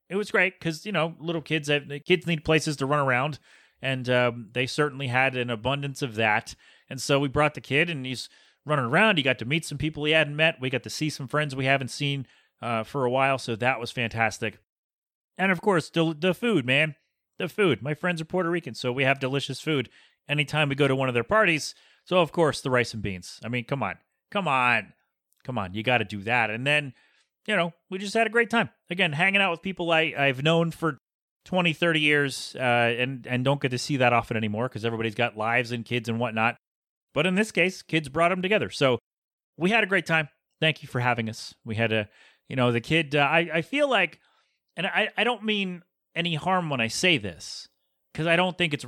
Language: English